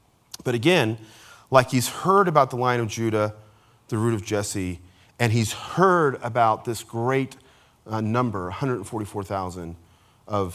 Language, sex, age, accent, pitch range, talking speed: English, male, 40-59, American, 115-155 Hz, 135 wpm